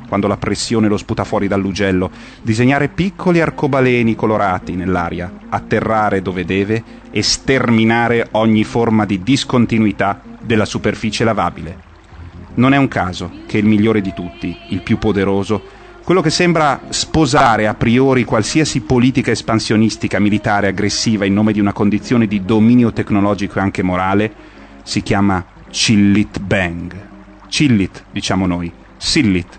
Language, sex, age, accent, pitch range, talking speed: Italian, male, 30-49, native, 100-120 Hz, 135 wpm